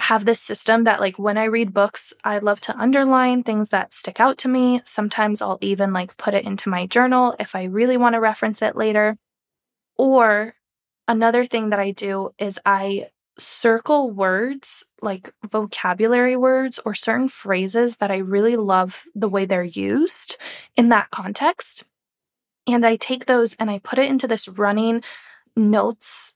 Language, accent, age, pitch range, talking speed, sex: English, American, 20-39, 205-245 Hz, 170 wpm, female